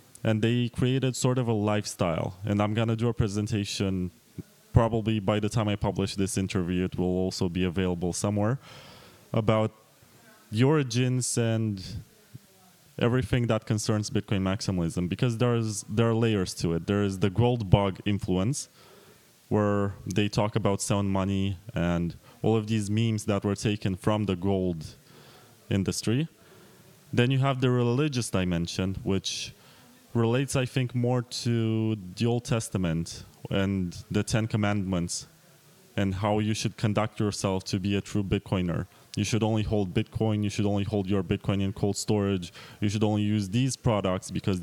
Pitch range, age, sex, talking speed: 100-115 Hz, 20-39, male, 160 wpm